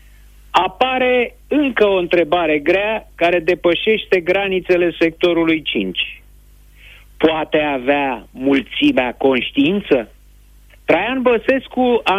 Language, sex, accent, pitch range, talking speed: Romanian, male, native, 145-220 Hz, 85 wpm